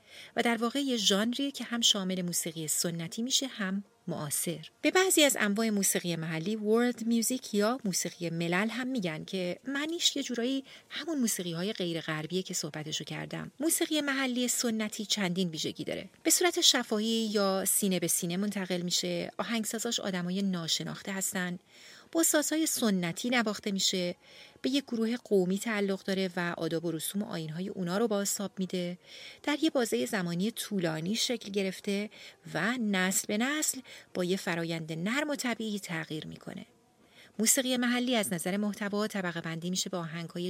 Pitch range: 175-245 Hz